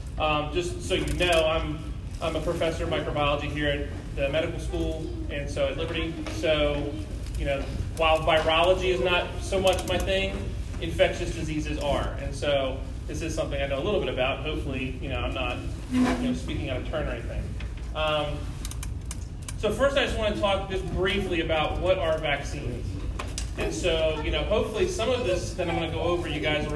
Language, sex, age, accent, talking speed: English, male, 30-49, American, 200 wpm